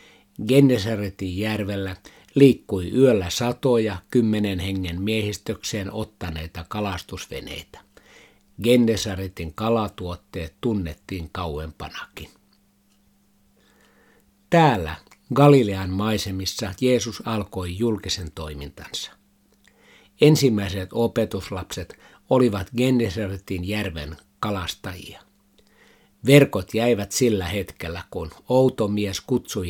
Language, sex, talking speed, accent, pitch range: Finnish, male, 70 wpm, native, 90-115 Hz